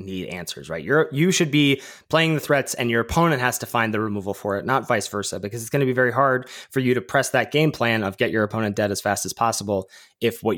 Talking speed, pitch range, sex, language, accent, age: 270 wpm, 105-135 Hz, male, English, American, 30-49